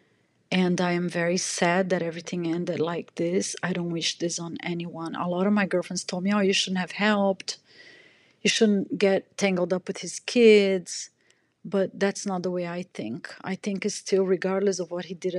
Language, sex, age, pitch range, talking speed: English, female, 40-59, 170-190 Hz, 205 wpm